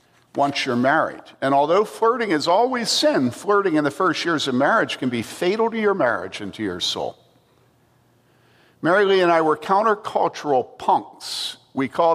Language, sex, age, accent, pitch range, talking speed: English, male, 50-69, American, 135-180 Hz, 175 wpm